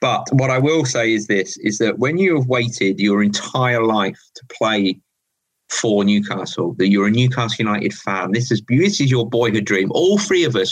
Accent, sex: British, male